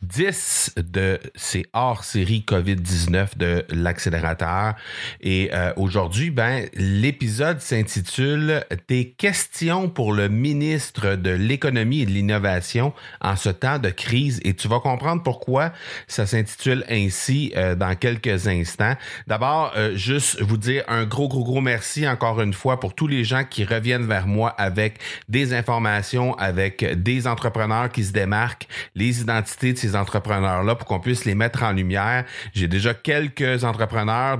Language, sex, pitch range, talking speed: French, male, 100-130 Hz, 155 wpm